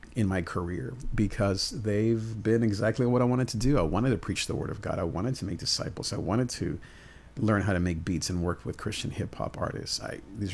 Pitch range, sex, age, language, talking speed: 95-115 Hz, male, 40-59, English, 235 wpm